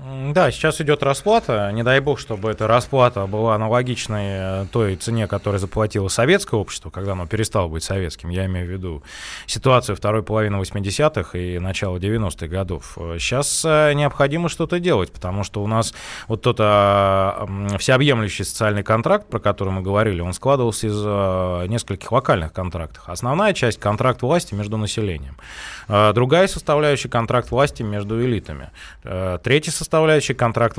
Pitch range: 95-120 Hz